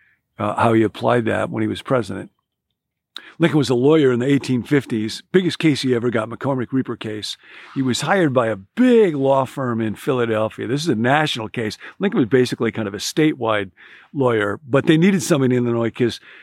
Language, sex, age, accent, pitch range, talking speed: English, male, 50-69, American, 115-140 Hz, 195 wpm